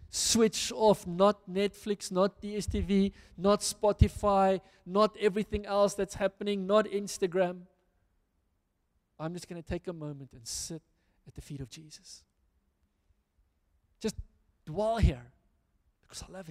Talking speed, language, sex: 125 wpm, English, male